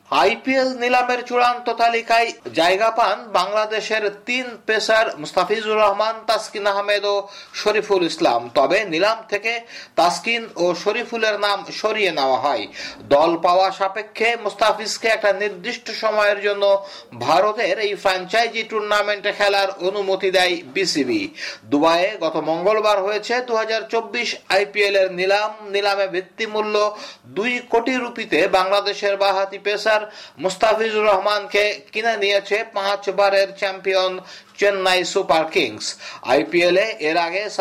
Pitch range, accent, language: 185-220 Hz, native, Bengali